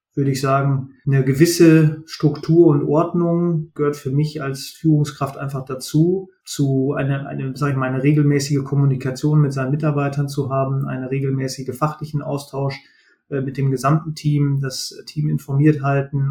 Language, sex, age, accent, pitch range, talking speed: German, male, 30-49, German, 135-150 Hz, 155 wpm